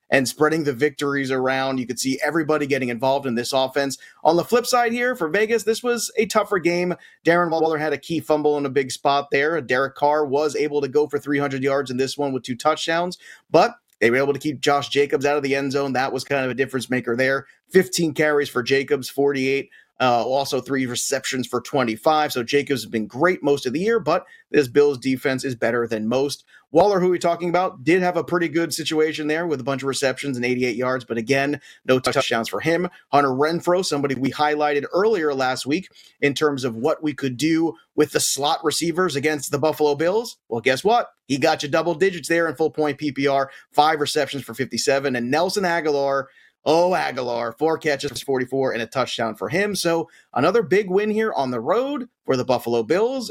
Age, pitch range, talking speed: 30-49, 135-170 Hz, 215 wpm